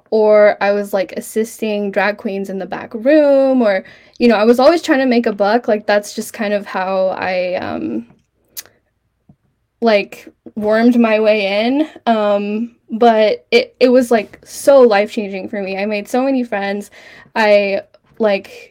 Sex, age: female, 10-29